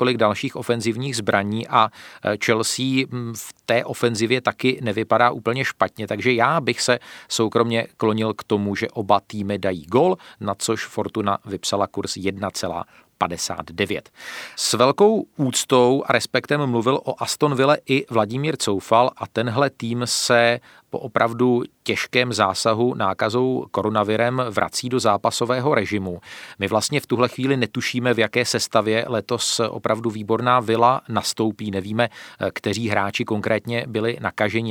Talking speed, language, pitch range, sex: 135 wpm, Czech, 105-125 Hz, male